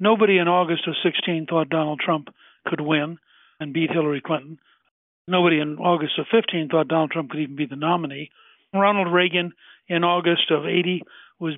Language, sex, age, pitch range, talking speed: English, male, 60-79, 155-180 Hz, 175 wpm